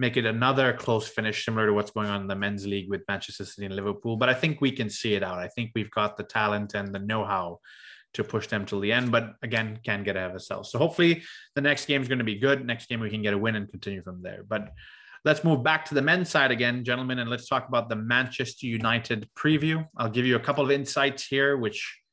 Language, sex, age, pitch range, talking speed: English, male, 20-39, 110-140 Hz, 265 wpm